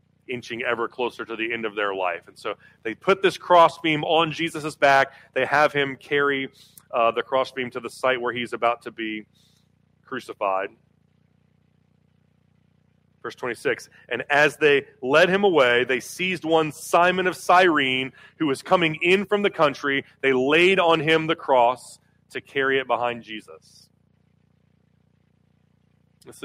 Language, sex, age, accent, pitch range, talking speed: English, male, 30-49, American, 130-160 Hz, 155 wpm